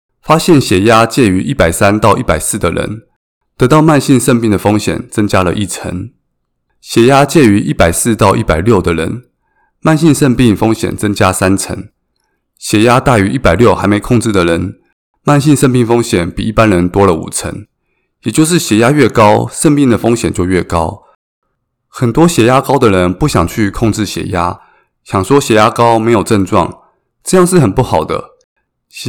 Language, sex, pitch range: Chinese, male, 90-130 Hz